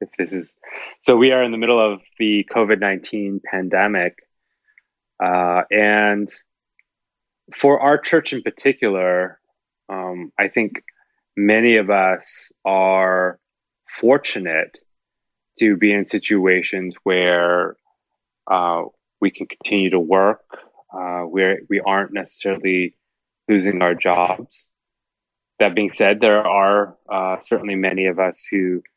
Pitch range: 95-105 Hz